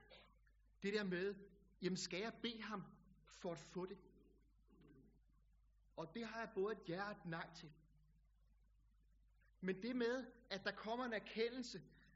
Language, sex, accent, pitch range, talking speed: Danish, male, native, 155-210 Hz, 145 wpm